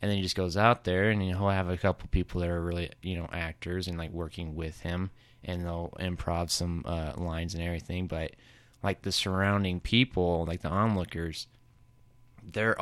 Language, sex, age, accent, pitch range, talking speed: English, male, 20-39, American, 85-110 Hz, 190 wpm